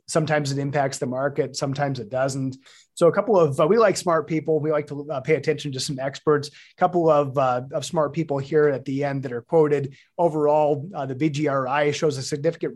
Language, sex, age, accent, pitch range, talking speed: English, male, 30-49, American, 135-155 Hz, 210 wpm